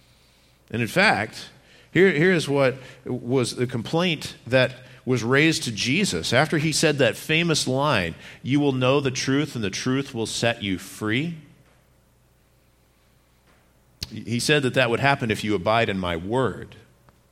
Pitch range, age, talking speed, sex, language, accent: 105-140 Hz, 50-69, 155 wpm, male, English, American